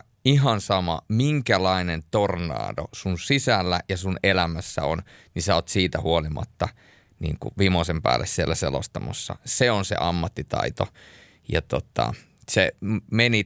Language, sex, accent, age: Finnish, male, native, 30-49